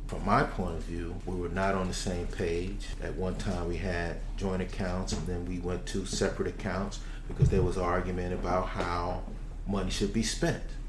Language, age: English, 30-49